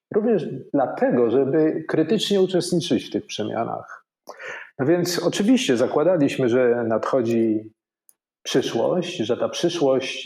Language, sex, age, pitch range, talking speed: Polish, male, 40-59, 120-160 Hz, 105 wpm